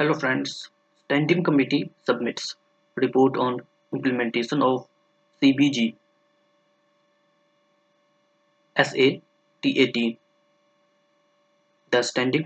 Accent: Indian